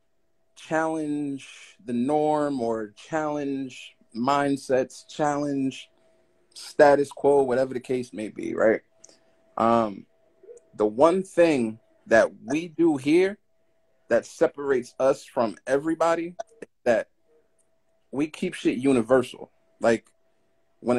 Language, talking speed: English, 105 wpm